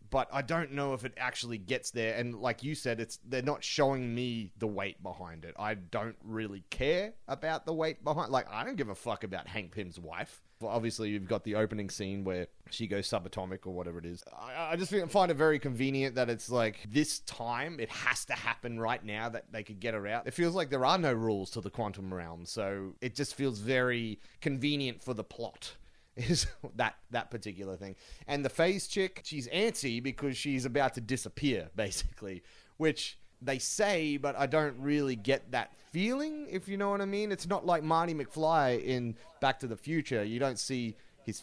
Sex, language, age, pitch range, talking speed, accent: male, English, 30-49, 105-145 Hz, 210 wpm, Australian